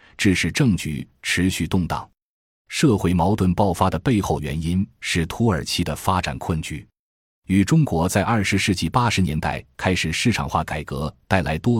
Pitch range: 80-110 Hz